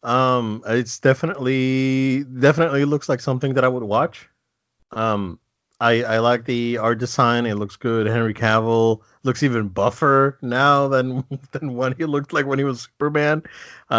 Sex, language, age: male, English, 30-49